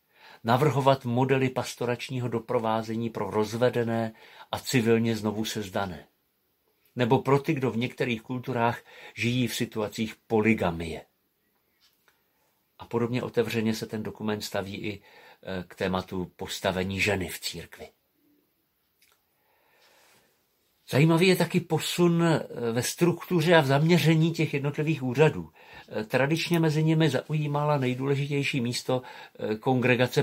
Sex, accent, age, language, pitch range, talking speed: male, native, 50-69, Czech, 110-140 Hz, 105 wpm